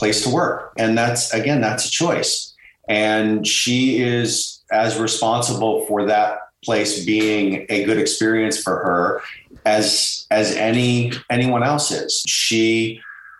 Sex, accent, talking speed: male, American, 135 wpm